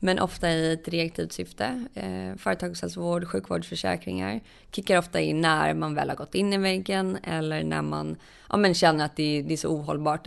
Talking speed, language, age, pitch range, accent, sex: 185 wpm, English, 20-39, 155-185 Hz, Swedish, female